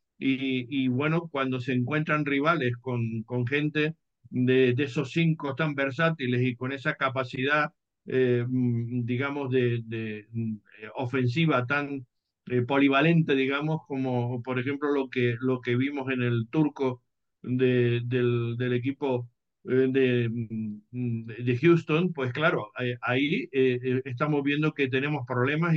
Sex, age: male, 60-79